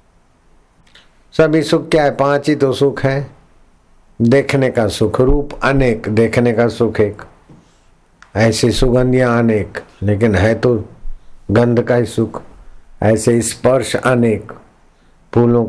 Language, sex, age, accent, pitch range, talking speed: Hindi, male, 60-79, native, 95-120 Hz, 120 wpm